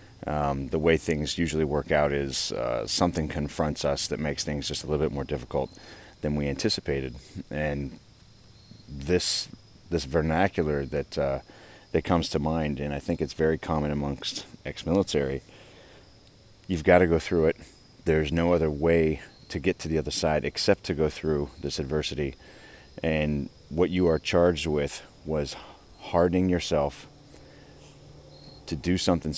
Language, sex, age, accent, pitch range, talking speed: English, male, 30-49, American, 75-100 Hz, 155 wpm